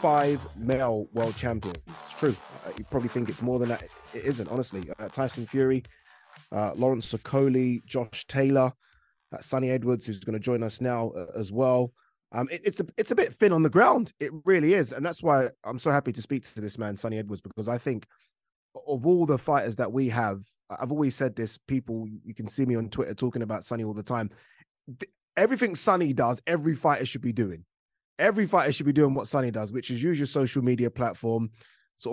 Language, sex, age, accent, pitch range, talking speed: English, male, 20-39, British, 115-140 Hz, 205 wpm